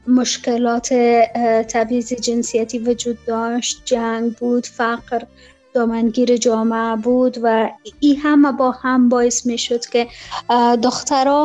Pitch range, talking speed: 225-250 Hz, 105 wpm